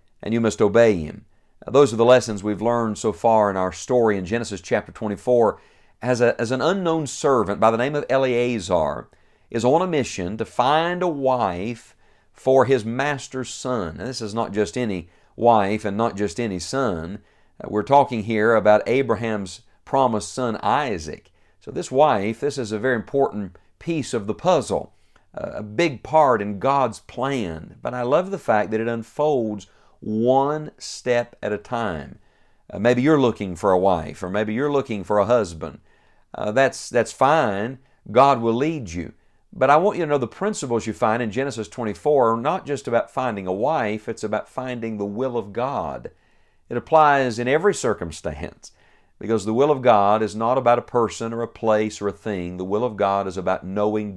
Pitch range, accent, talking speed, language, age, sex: 105-130 Hz, American, 190 wpm, English, 50-69, male